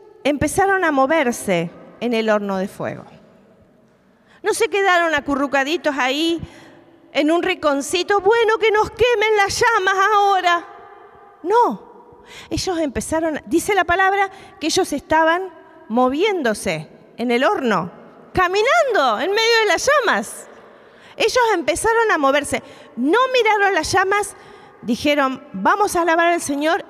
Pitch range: 255-395 Hz